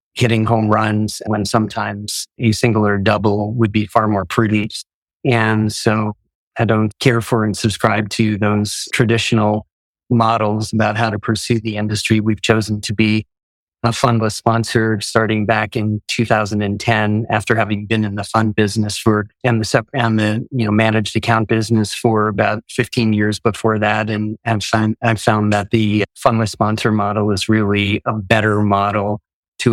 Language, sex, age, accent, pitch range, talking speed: English, male, 30-49, American, 105-115 Hz, 170 wpm